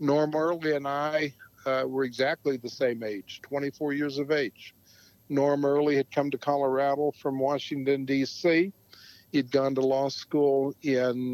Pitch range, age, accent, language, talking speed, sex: 125-145 Hz, 60-79, American, English, 155 wpm, male